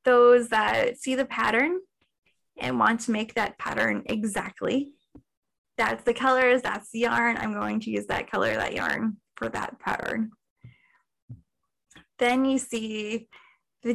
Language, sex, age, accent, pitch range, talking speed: English, female, 10-29, American, 220-270 Hz, 140 wpm